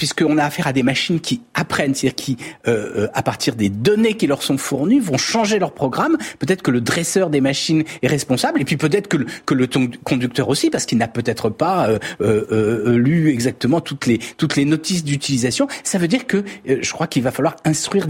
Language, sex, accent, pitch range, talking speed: French, male, French, 145-215 Hz, 220 wpm